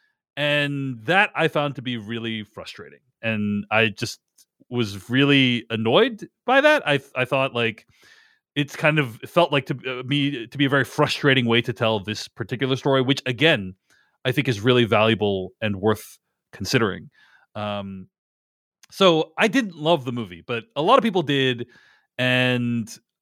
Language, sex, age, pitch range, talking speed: English, male, 30-49, 115-155 Hz, 165 wpm